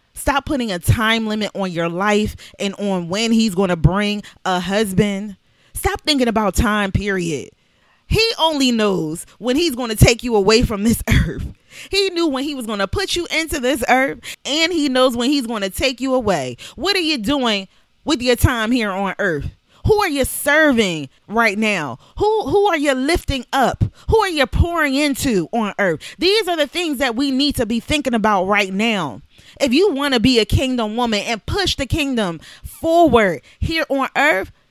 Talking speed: 200 wpm